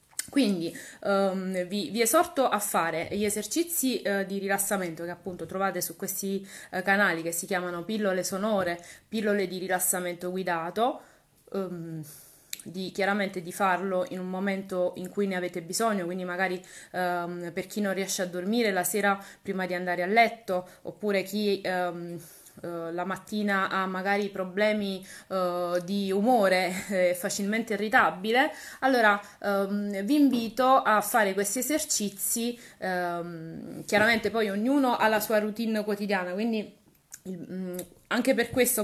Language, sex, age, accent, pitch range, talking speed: Italian, female, 20-39, native, 185-225 Hz, 125 wpm